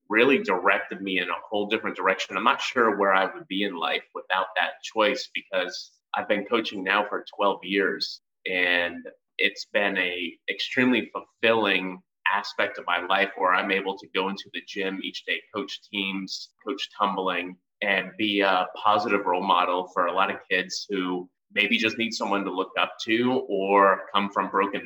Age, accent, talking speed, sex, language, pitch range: 30-49, American, 185 wpm, male, English, 90-105 Hz